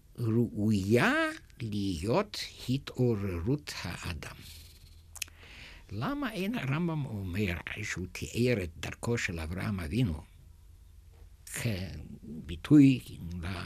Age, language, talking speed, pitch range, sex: 60-79, Hebrew, 70 wpm, 85-125 Hz, male